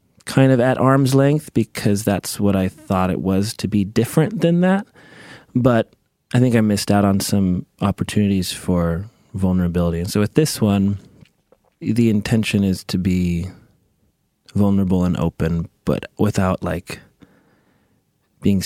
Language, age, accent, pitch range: English, 30-49, American, 95-120 Hz